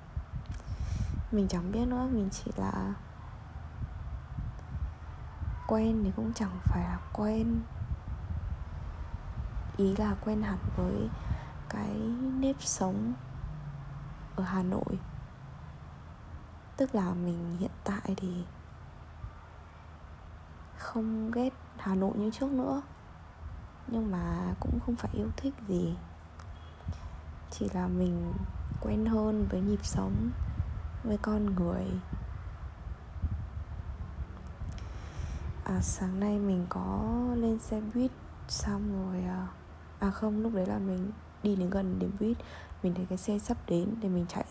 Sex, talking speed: female, 115 wpm